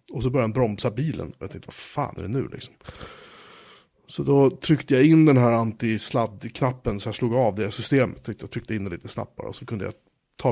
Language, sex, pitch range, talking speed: Swedish, male, 115-135 Hz, 235 wpm